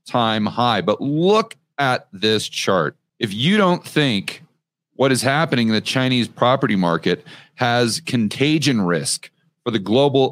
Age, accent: 40-59, American